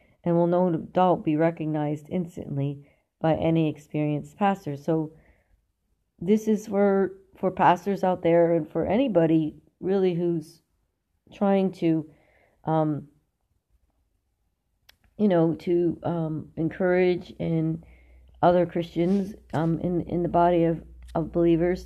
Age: 40-59